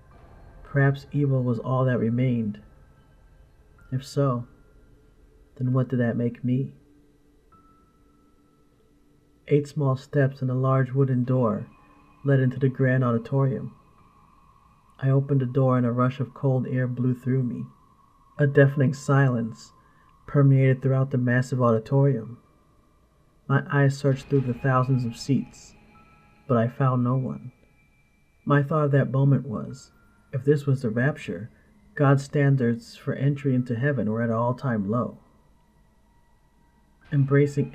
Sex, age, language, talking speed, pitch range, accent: male, 40-59, English, 135 wpm, 120-140 Hz, American